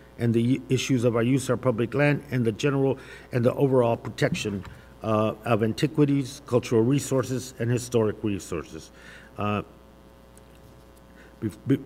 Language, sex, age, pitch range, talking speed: English, male, 50-69, 110-130 Hz, 130 wpm